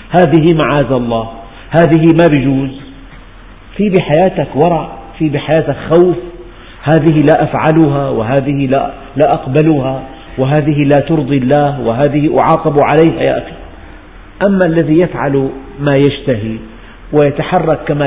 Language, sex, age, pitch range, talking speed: Arabic, male, 50-69, 125-165 Hz, 115 wpm